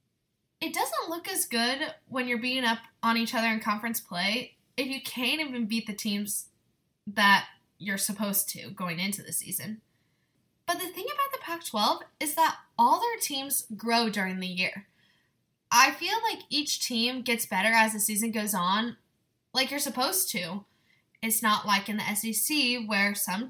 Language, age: English, 10-29